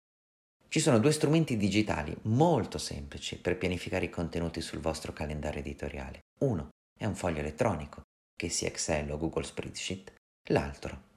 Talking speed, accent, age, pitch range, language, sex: 145 wpm, native, 40-59, 75-110 Hz, Italian, male